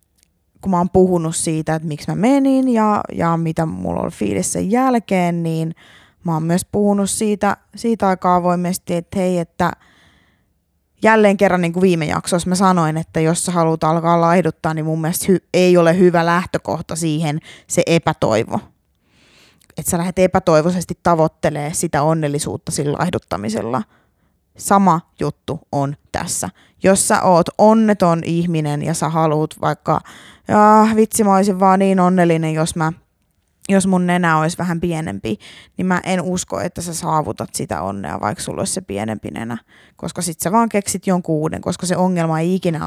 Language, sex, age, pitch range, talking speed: Finnish, female, 20-39, 150-185 Hz, 160 wpm